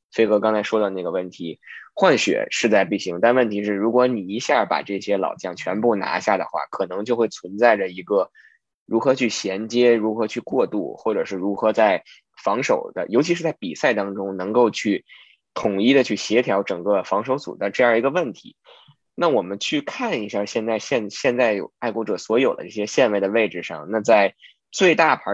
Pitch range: 100-120 Hz